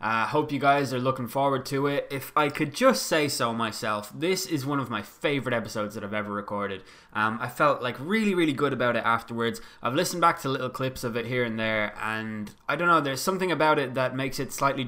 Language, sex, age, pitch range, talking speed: English, male, 20-39, 110-140 Hz, 245 wpm